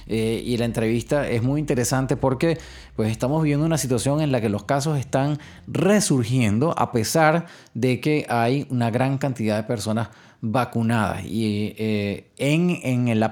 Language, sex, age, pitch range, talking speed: English, male, 30-49, 110-150 Hz, 160 wpm